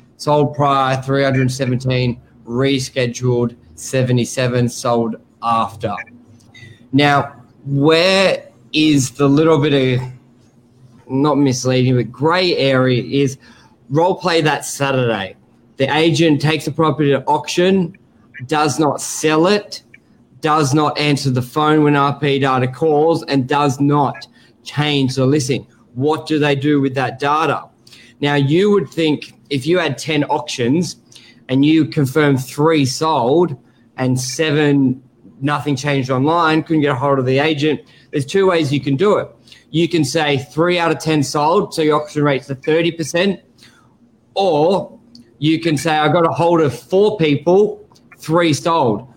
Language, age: English, 20-39